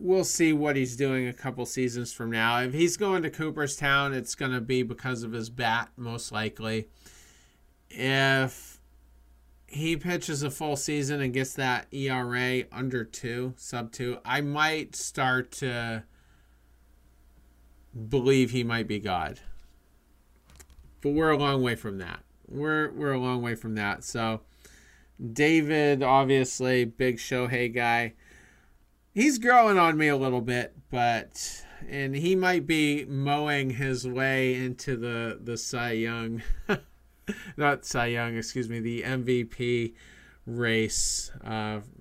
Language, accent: English, American